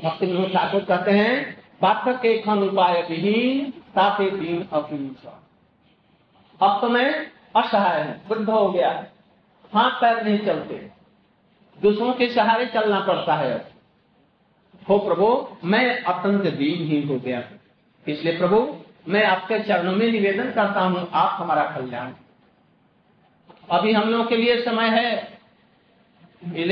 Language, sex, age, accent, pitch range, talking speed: Hindi, male, 50-69, native, 185-230 Hz, 110 wpm